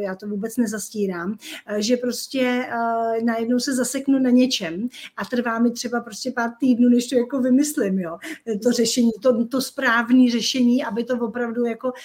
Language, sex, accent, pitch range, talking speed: Czech, female, native, 220-255 Hz, 170 wpm